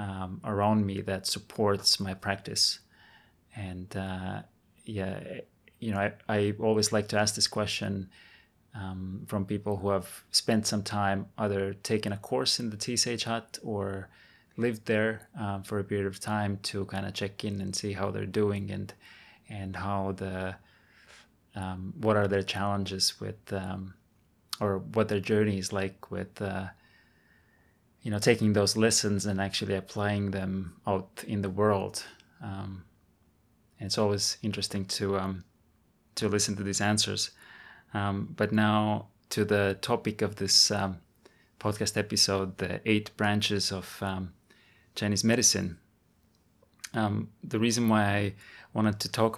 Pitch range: 95-105 Hz